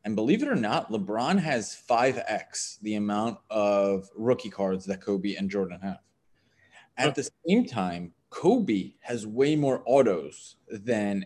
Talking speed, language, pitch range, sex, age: 150 wpm, English, 100-140 Hz, male, 20-39